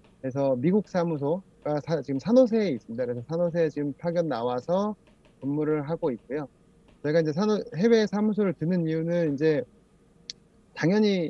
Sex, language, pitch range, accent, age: male, Korean, 135-175 Hz, native, 30-49